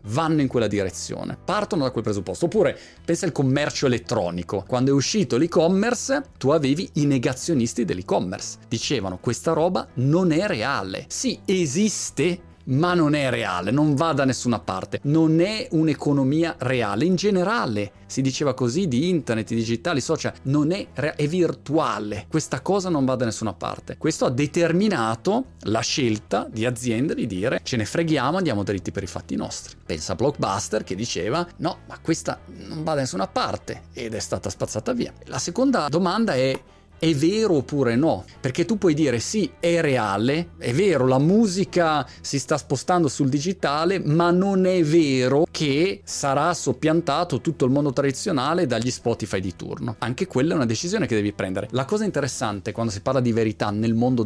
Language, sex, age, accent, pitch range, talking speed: Italian, male, 30-49, native, 115-165 Hz, 175 wpm